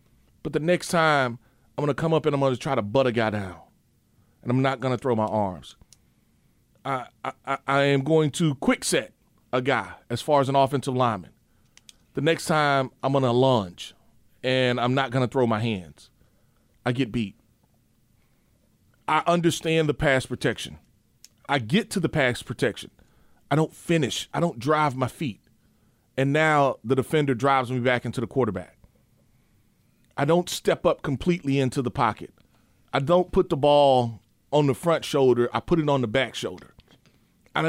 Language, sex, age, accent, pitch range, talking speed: English, male, 40-59, American, 120-155 Hz, 185 wpm